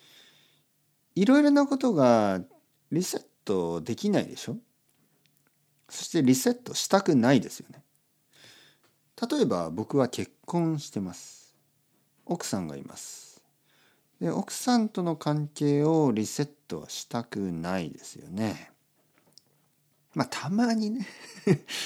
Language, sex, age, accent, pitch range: Japanese, male, 50-69, native, 95-155 Hz